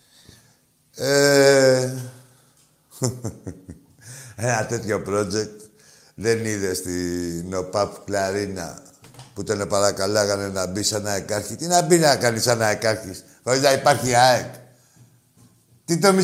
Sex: male